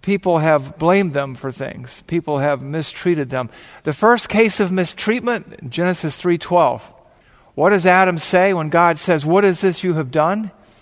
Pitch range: 150-200 Hz